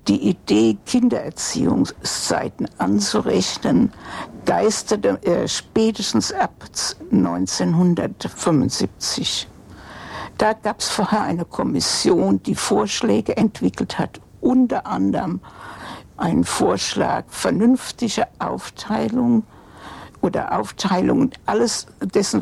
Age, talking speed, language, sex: 60-79, 75 wpm, German, female